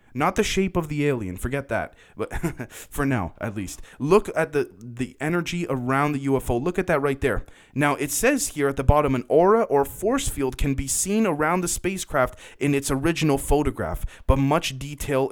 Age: 20-39